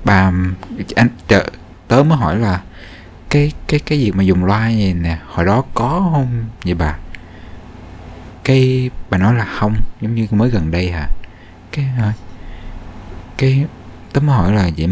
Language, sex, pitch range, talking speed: Vietnamese, male, 85-120 Hz, 165 wpm